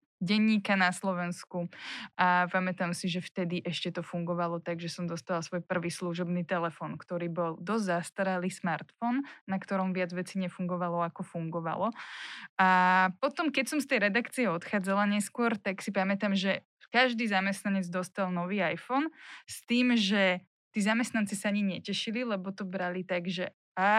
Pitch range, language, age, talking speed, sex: 180-210 Hz, Slovak, 20-39, 155 wpm, female